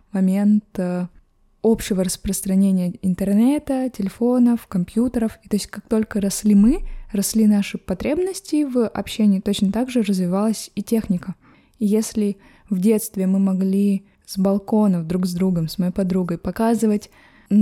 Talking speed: 130 wpm